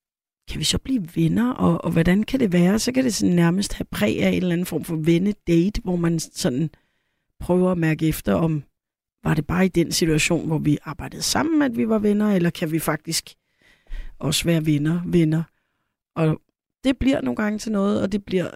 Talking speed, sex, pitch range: 210 wpm, female, 155-200 Hz